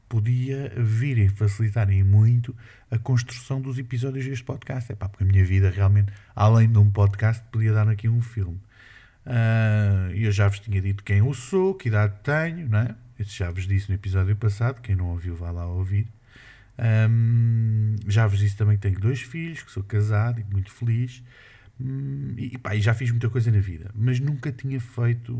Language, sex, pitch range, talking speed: Portuguese, male, 100-120 Hz, 200 wpm